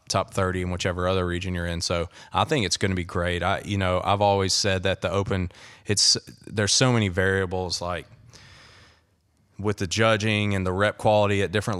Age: 30-49